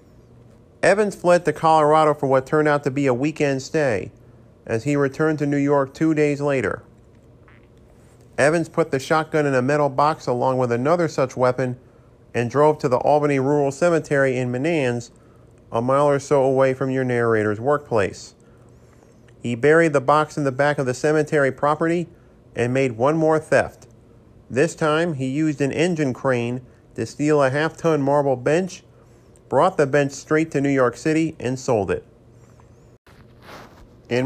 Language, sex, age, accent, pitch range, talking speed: English, male, 40-59, American, 120-150 Hz, 165 wpm